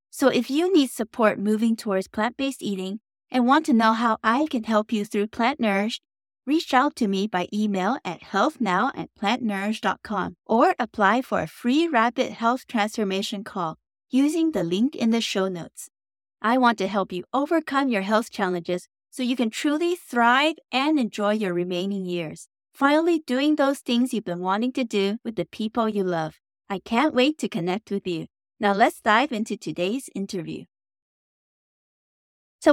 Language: English